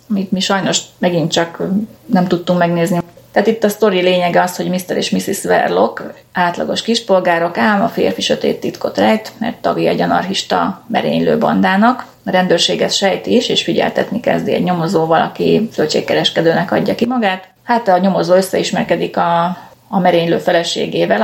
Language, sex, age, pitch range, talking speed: Hungarian, female, 30-49, 170-205 Hz, 155 wpm